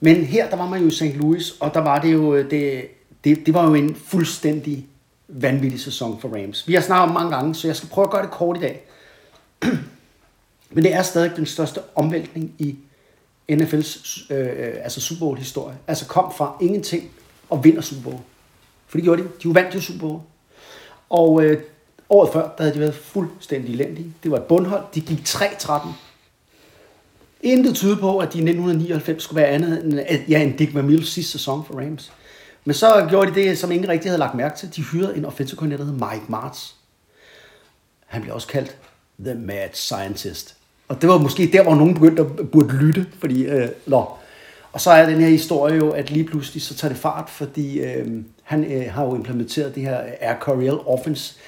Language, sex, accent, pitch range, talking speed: Danish, male, native, 140-170 Hz, 205 wpm